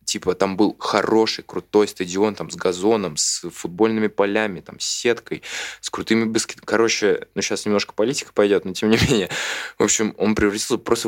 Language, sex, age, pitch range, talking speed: Russian, male, 20-39, 90-110 Hz, 180 wpm